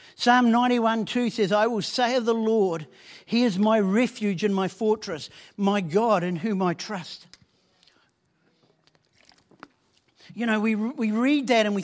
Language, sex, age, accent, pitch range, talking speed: English, male, 50-69, Australian, 195-245 Hz, 150 wpm